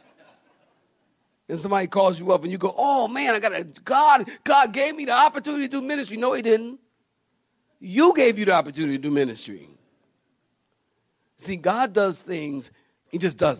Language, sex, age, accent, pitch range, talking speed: English, male, 50-69, American, 140-215 Hz, 175 wpm